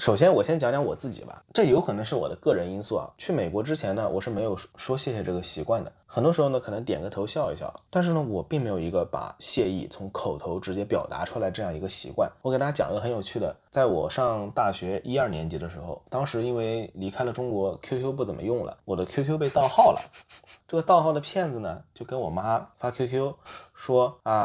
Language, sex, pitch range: Chinese, male, 105-145 Hz